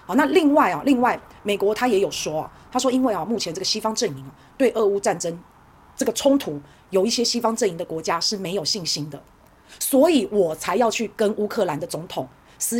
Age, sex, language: 30-49, female, Chinese